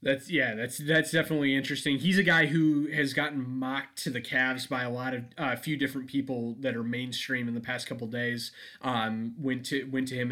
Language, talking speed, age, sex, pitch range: English, 235 wpm, 20-39, male, 120-140 Hz